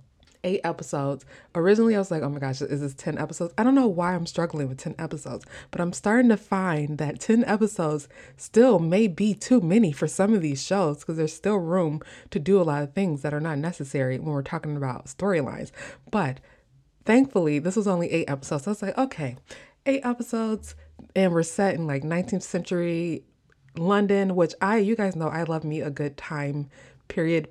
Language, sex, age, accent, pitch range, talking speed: English, female, 20-39, American, 140-185 Hz, 205 wpm